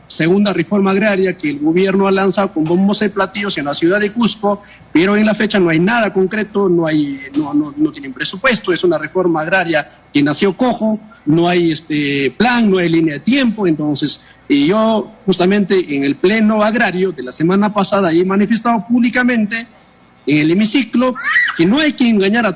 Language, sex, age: Spanish, male, 50-69